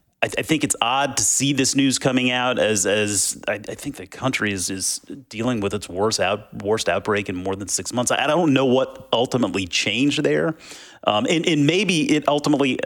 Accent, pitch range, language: American, 105-140 Hz, English